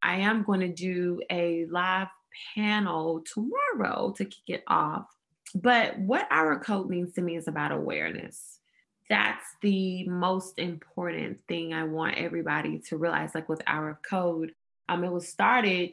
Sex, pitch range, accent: female, 160-195 Hz, American